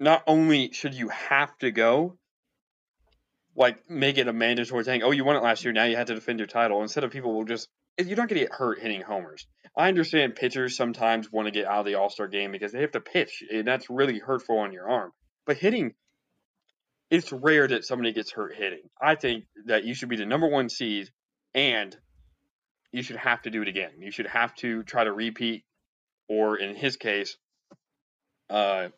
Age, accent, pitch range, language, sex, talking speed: 20-39, American, 110-130 Hz, English, male, 210 wpm